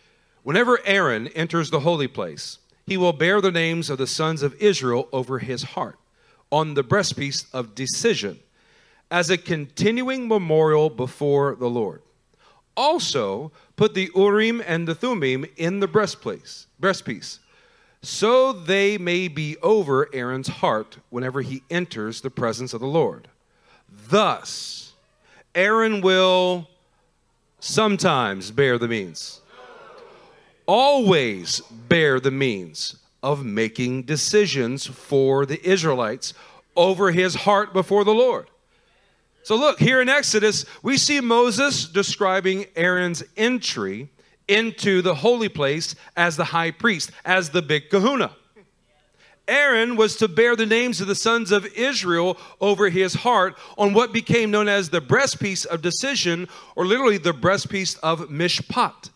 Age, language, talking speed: 40-59, English, 135 wpm